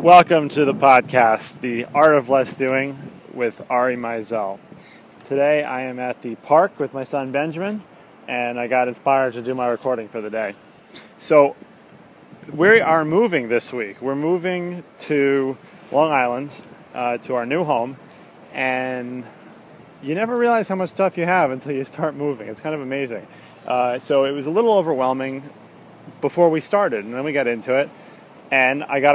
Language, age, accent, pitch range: English, 30-49, American, 125-150 Hz